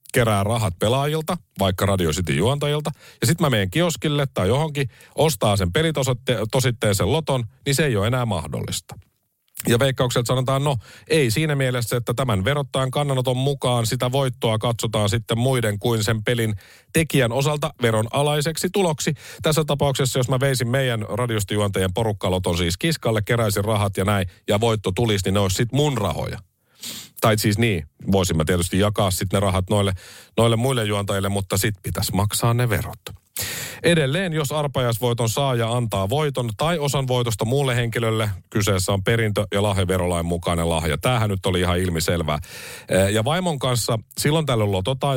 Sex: male